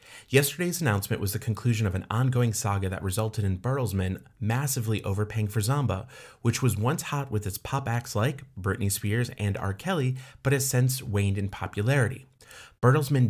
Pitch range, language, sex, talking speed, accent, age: 100-125 Hz, English, male, 170 wpm, American, 30-49